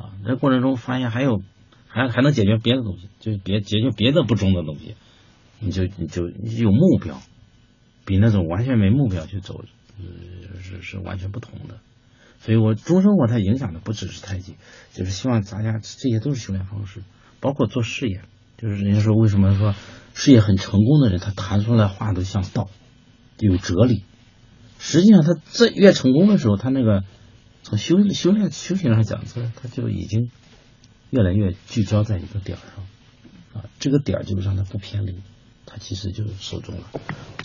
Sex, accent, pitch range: male, native, 100-125 Hz